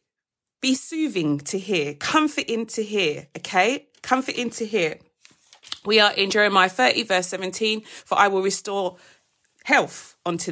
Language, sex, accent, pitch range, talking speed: English, female, British, 195-260 Hz, 135 wpm